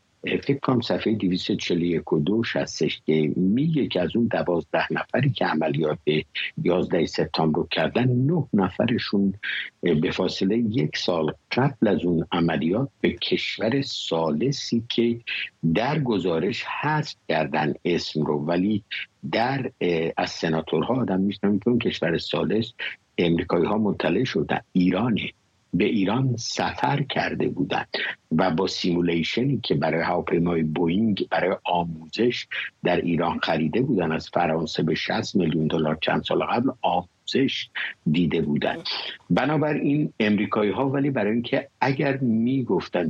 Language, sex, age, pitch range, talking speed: English, male, 60-79, 85-125 Hz, 125 wpm